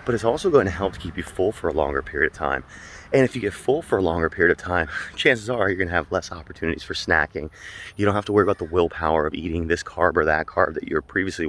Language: English